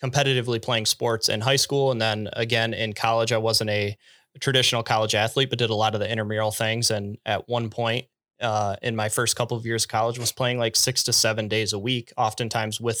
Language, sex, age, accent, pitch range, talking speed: English, male, 20-39, American, 110-125 Hz, 220 wpm